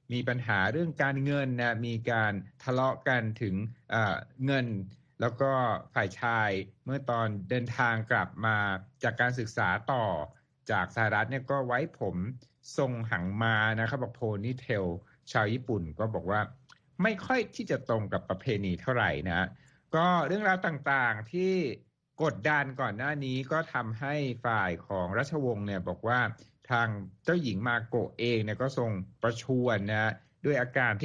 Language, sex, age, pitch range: Thai, male, 60-79, 110-135 Hz